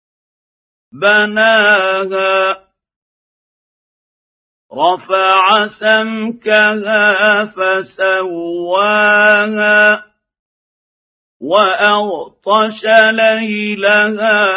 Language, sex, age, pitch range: Arabic, male, 50-69, 170-210 Hz